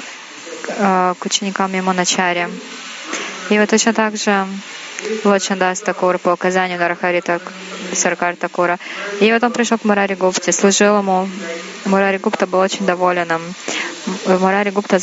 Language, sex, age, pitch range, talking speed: Russian, female, 20-39, 180-210 Hz, 100 wpm